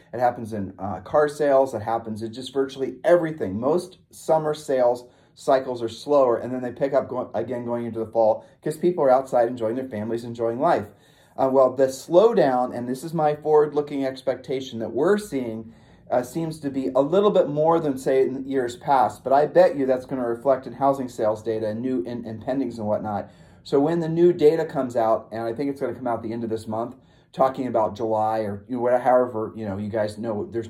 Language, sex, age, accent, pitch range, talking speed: English, male, 30-49, American, 110-135 Hz, 225 wpm